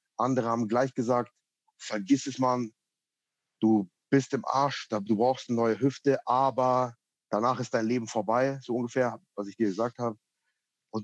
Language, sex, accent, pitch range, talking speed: German, male, German, 115-135 Hz, 165 wpm